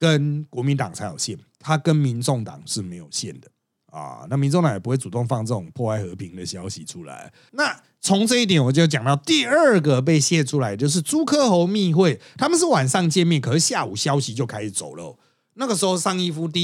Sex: male